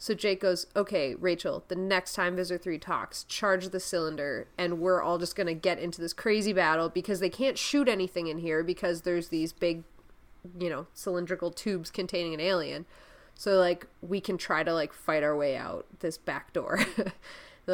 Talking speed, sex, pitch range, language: 195 wpm, female, 175-215 Hz, English